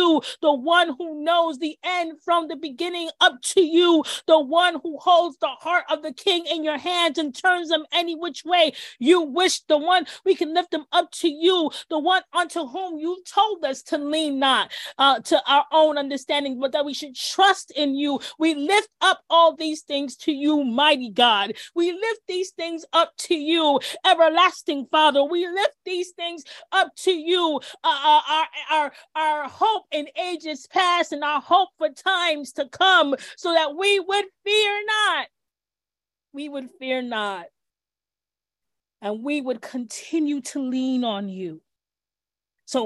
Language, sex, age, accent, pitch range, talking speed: English, female, 30-49, American, 255-345 Hz, 170 wpm